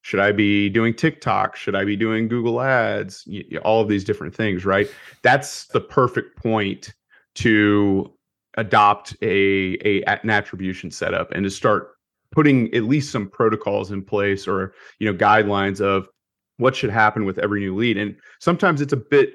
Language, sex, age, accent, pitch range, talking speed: English, male, 30-49, American, 100-115 Hz, 175 wpm